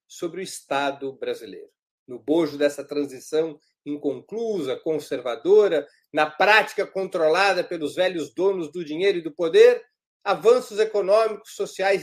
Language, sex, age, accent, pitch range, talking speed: Portuguese, male, 50-69, Brazilian, 150-210 Hz, 120 wpm